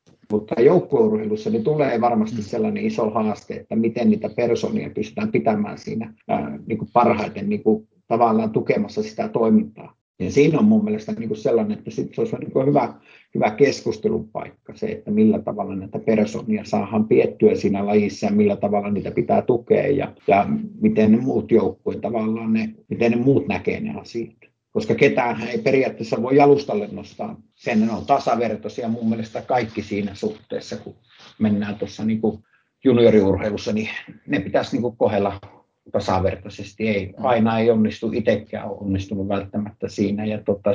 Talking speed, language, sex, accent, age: 165 wpm, Finnish, male, native, 50-69